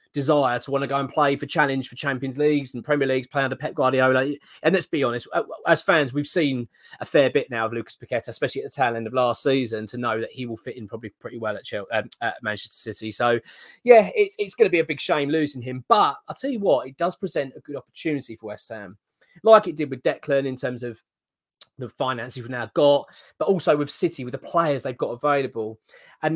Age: 20-39